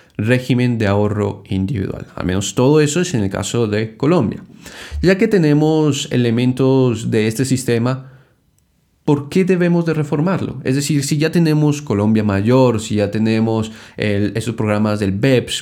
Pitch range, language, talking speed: 110-145 Hz, Spanish, 155 wpm